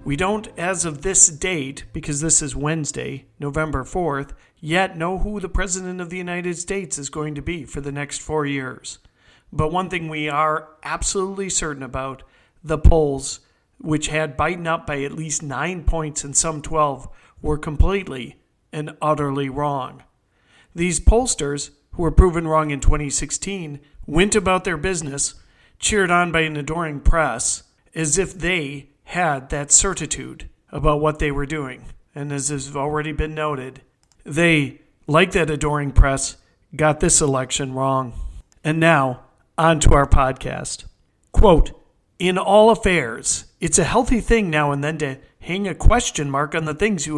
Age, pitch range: 50-69, 145-185 Hz